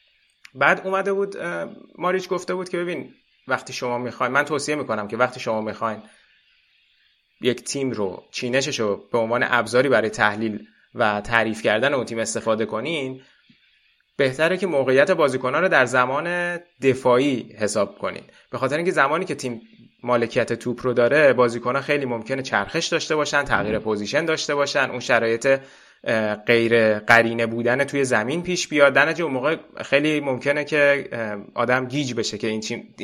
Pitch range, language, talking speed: 115-140 Hz, Persian, 155 wpm